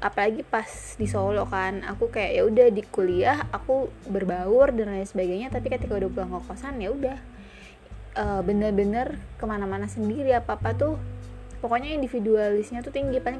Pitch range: 190-245 Hz